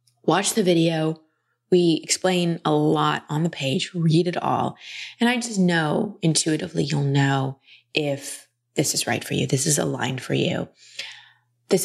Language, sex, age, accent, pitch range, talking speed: English, female, 20-39, American, 140-165 Hz, 160 wpm